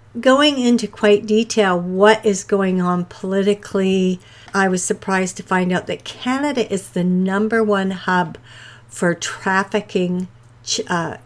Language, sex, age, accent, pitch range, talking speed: English, female, 60-79, American, 170-215 Hz, 135 wpm